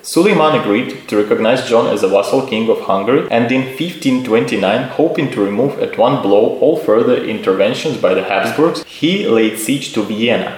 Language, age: English, 20-39